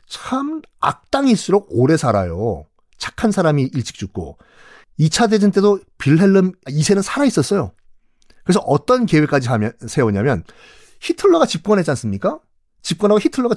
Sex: male